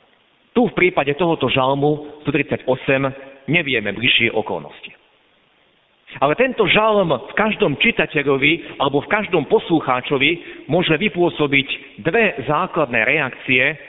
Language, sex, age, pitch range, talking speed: Slovak, male, 50-69, 130-175 Hz, 100 wpm